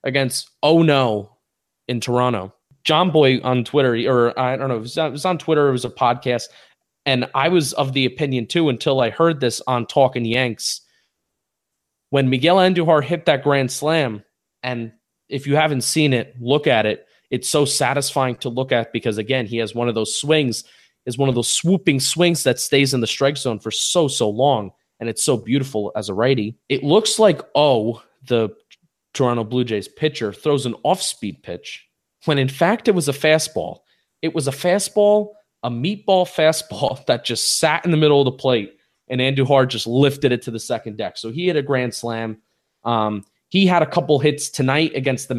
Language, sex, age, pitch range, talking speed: English, male, 20-39, 125-155 Hz, 195 wpm